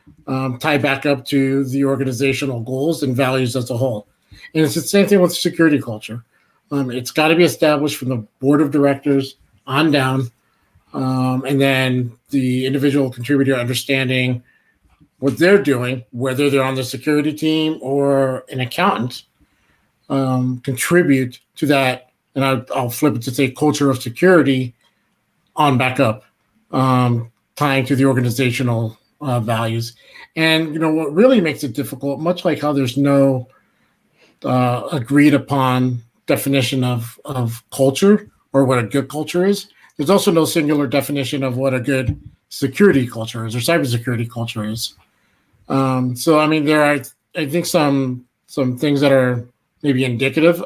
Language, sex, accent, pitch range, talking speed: English, male, American, 125-150 Hz, 160 wpm